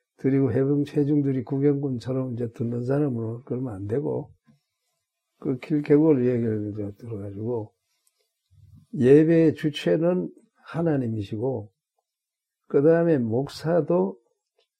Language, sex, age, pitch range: Korean, male, 60-79, 115-155 Hz